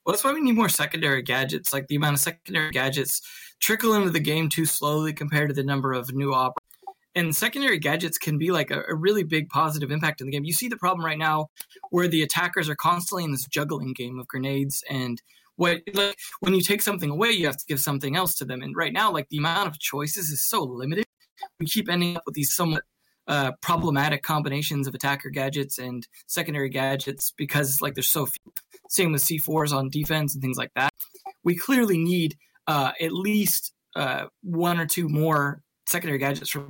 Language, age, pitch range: English, 20-39, 140-180 Hz